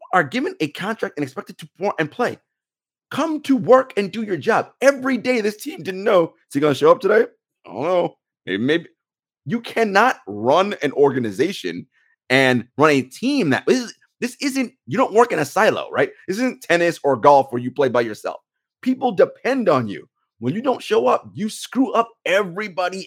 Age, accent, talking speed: 30-49, American, 205 wpm